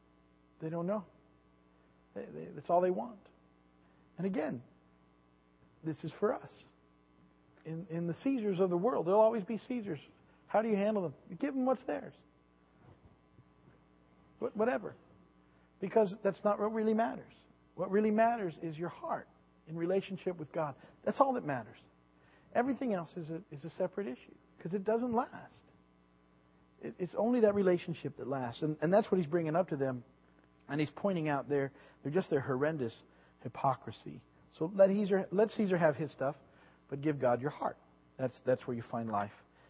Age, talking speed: 50-69, 170 wpm